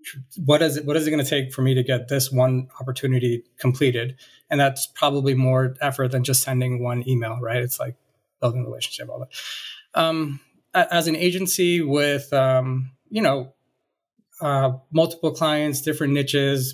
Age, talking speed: 20-39, 165 wpm